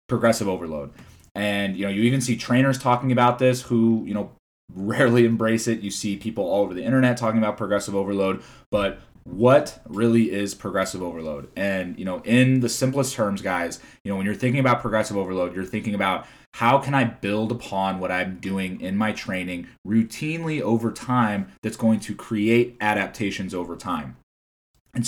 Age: 20-39